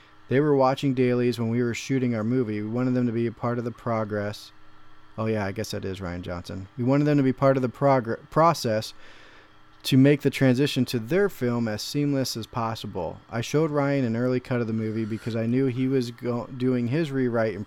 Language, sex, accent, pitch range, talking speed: English, male, American, 110-135 Hz, 230 wpm